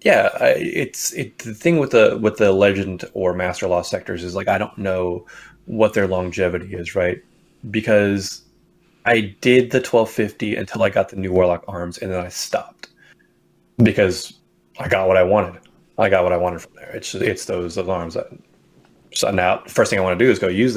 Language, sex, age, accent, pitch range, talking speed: English, male, 30-49, American, 90-105 Hz, 200 wpm